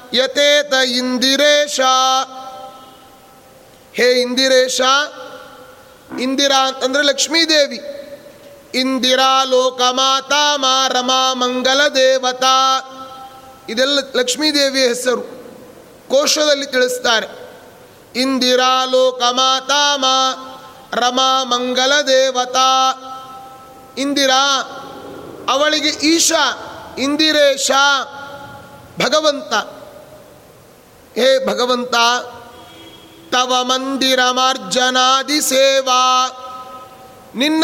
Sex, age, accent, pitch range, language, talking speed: male, 30-49, native, 255-285 Hz, Kannada, 55 wpm